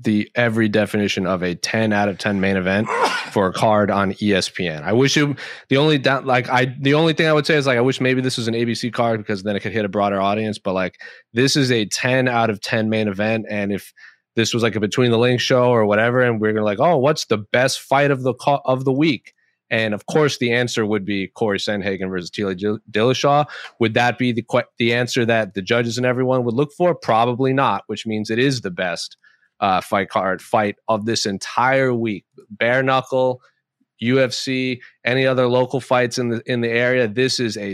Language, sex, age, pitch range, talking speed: English, male, 30-49, 105-130 Hz, 230 wpm